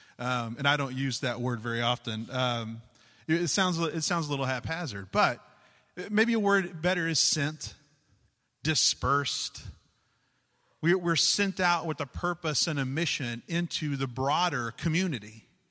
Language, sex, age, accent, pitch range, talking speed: English, male, 30-49, American, 125-175 Hz, 150 wpm